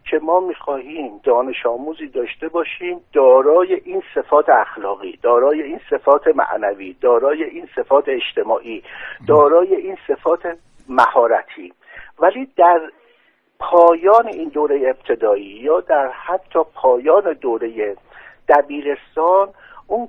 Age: 60-79